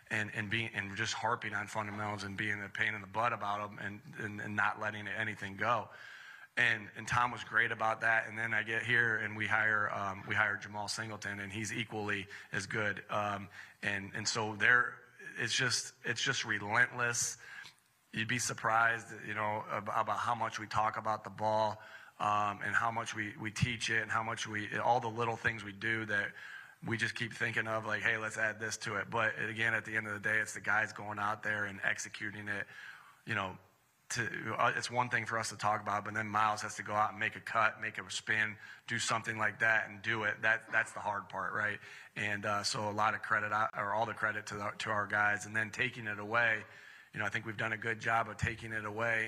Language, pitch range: English, 105-115 Hz